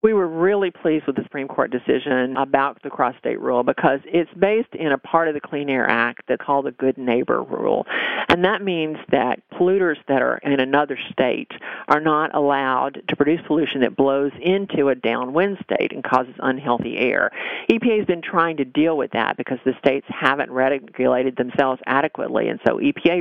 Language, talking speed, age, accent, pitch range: English, 190 wpm, 50-69, American, 130-170 Hz